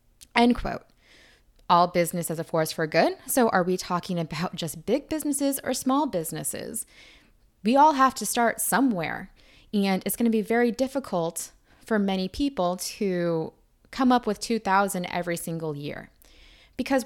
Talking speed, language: 160 wpm, English